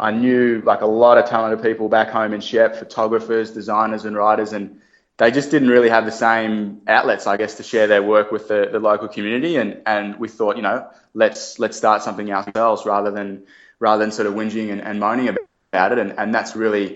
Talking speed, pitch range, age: 225 wpm, 100-115 Hz, 20-39